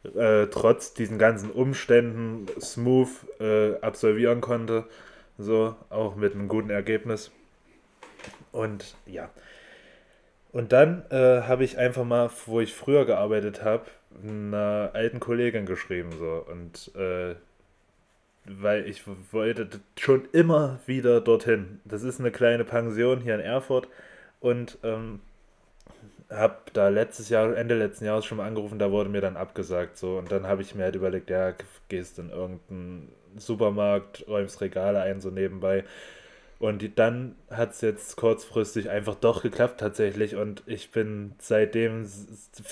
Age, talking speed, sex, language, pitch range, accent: 20-39, 140 wpm, male, German, 100-120 Hz, German